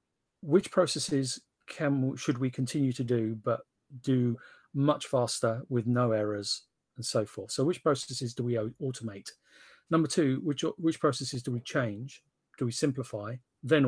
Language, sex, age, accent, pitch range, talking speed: English, male, 40-59, British, 120-145 Hz, 155 wpm